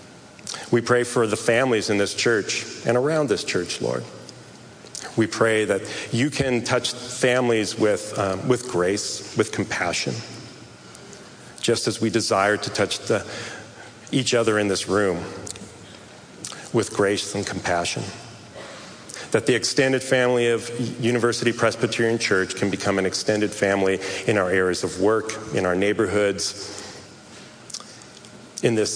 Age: 40-59